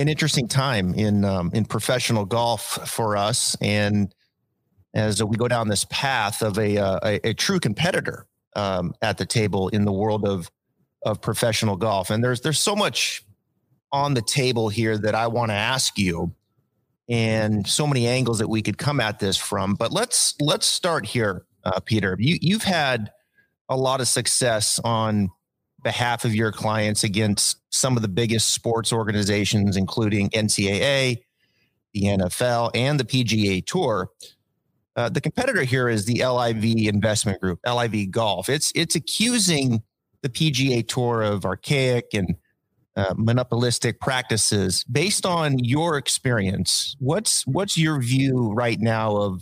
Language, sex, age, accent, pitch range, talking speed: English, male, 30-49, American, 105-130 Hz, 155 wpm